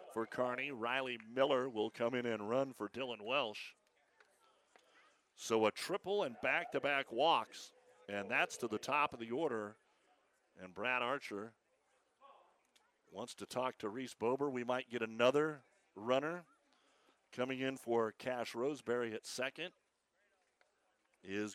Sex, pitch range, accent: male, 110-135 Hz, American